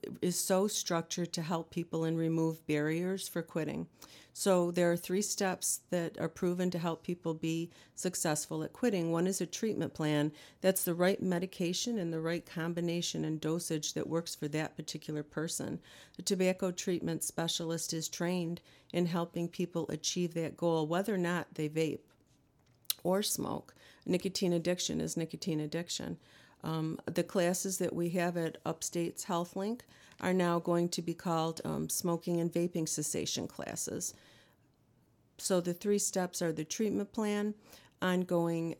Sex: female